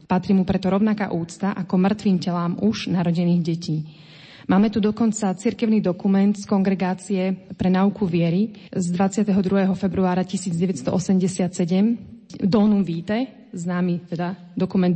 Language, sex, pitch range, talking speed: Slovak, female, 180-205 Hz, 120 wpm